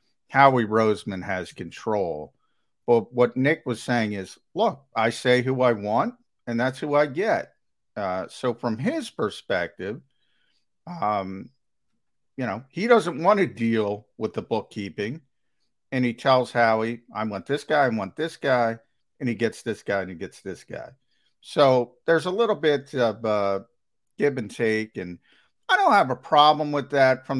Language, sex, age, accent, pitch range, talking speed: English, male, 50-69, American, 110-140 Hz, 170 wpm